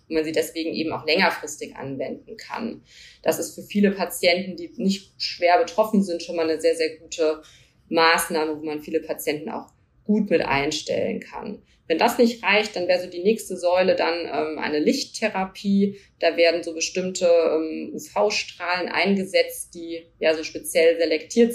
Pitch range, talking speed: 165-185 Hz, 170 wpm